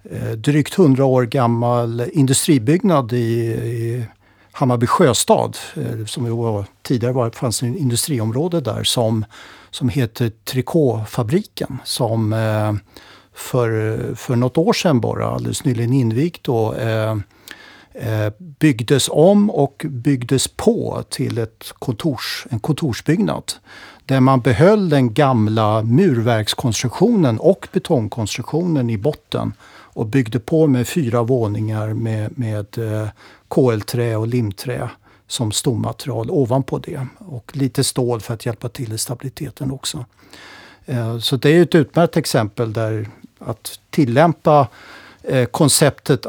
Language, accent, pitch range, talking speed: Swedish, native, 115-145 Hz, 110 wpm